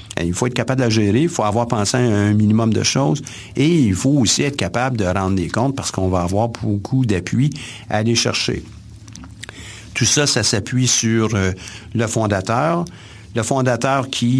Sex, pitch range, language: male, 105-125 Hz, French